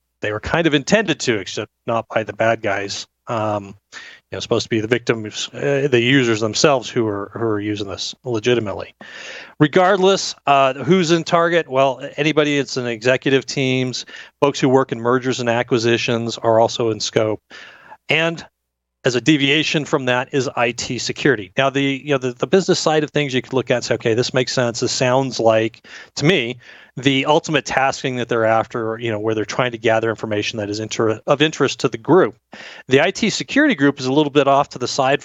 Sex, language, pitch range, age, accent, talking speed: male, English, 115-145 Hz, 30-49, American, 205 wpm